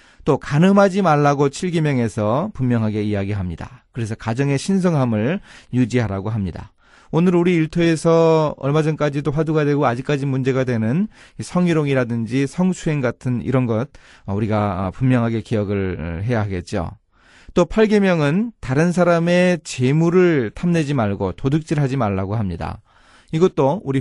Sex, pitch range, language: male, 110-165 Hz, Korean